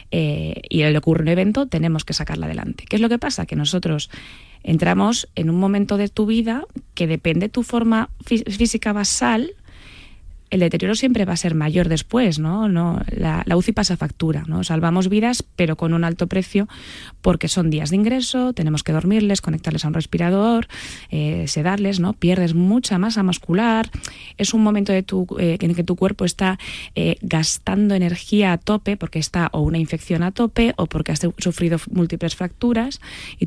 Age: 20-39